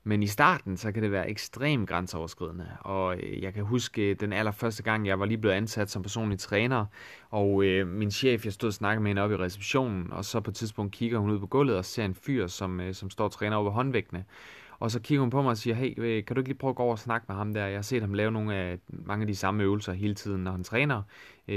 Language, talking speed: Danish, 270 wpm